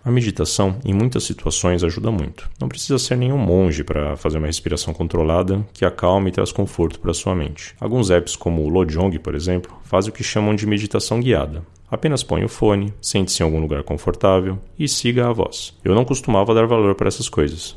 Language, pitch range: Portuguese, 85-115 Hz